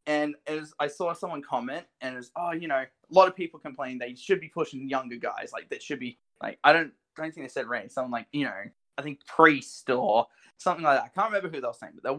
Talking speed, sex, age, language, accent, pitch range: 275 wpm, male, 20-39, English, Australian, 140-180 Hz